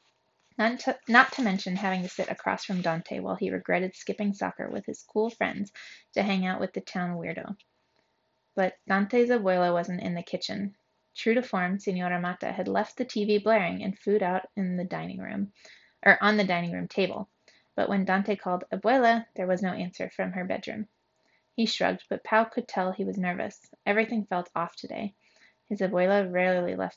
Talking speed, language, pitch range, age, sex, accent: 190 wpm, English, 185-220 Hz, 20-39, female, American